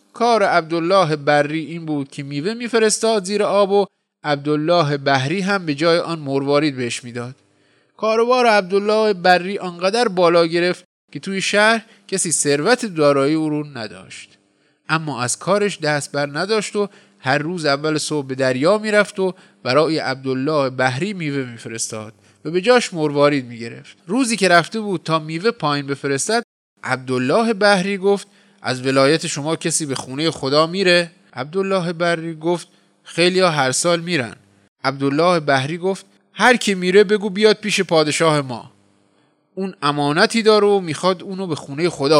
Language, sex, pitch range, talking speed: Persian, male, 140-195 Hz, 150 wpm